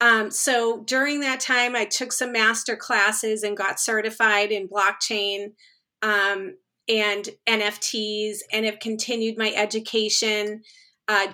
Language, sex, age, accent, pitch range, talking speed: English, female, 40-59, American, 215-255 Hz, 125 wpm